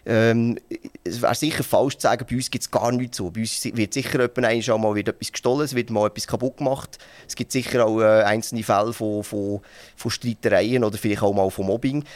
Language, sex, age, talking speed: German, male, 30-49, 220 wpm